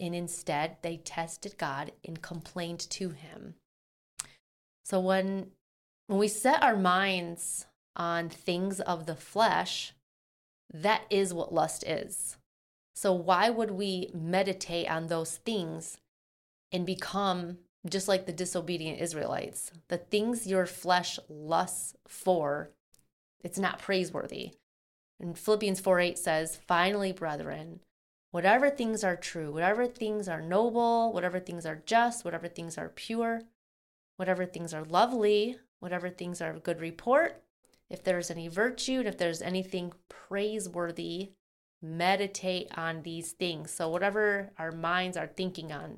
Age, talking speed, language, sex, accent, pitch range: 30-49, 130 wpm, English, female, American, 165-195 Hz